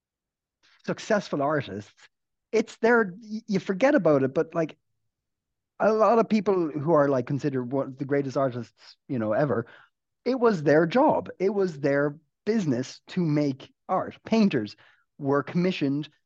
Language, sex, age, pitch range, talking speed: English, male, 30-49, 120-175 Hz, 150 wpm